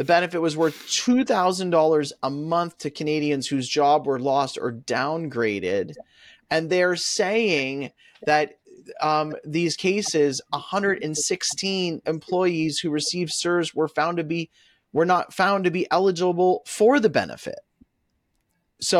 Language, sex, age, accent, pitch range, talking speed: English, male, 30-49, American, 150-185 Hz, 135 wpm